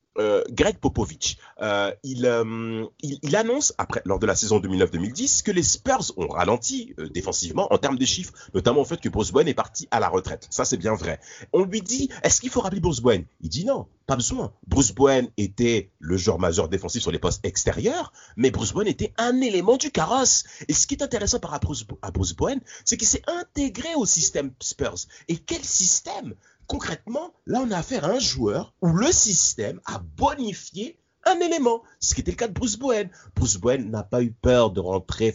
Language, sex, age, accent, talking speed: French, male, 40-59, French, 210 wpm